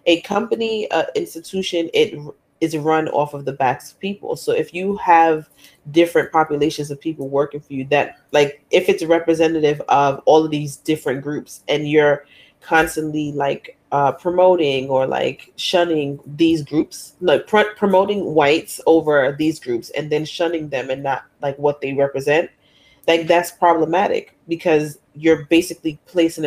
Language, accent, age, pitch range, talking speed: English, American, 30-49, 145-180 Hz, 160 wpm